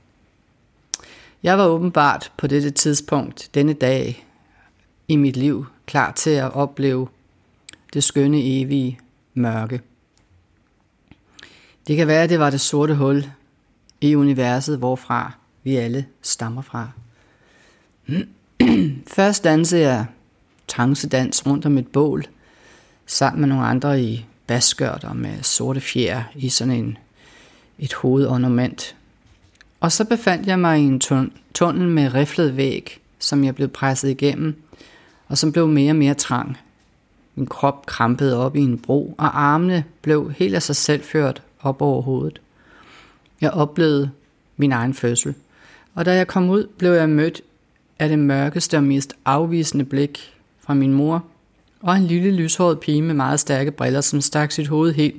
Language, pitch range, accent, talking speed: Danish, 125-155 Hz, native, 145 wpm